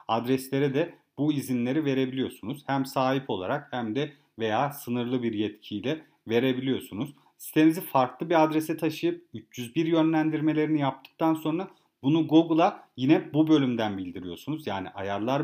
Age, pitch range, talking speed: 40-59, 125-160 Hz, 125 wpm